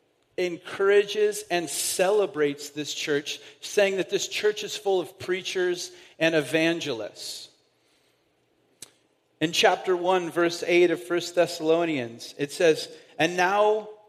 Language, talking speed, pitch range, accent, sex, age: English, 115 wpm, 155-205 Hz, American, male, 40-59